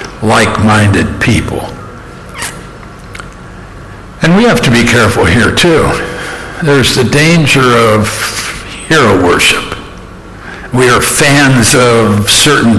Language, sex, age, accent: English, male, 60-79, American